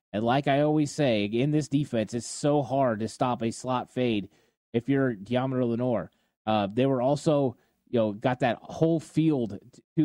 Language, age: English, 20-39